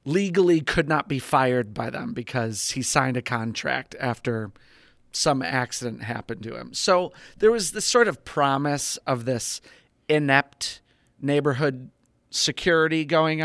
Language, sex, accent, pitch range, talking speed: English, male, American, 120-150 Hz, 140 wpm